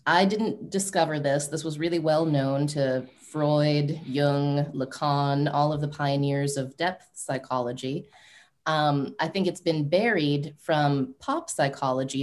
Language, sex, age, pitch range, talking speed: English, female, 20-39, 140-170 Hz, 140 wpm